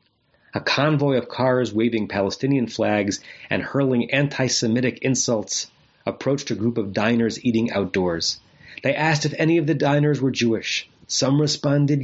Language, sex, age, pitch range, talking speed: English, male, 30-49, 110-150 Hz, 145 wpm